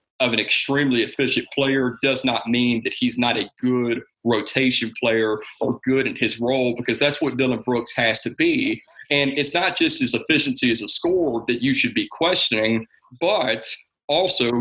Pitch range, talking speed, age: 115-140 Hz, 185 wpm, 30-49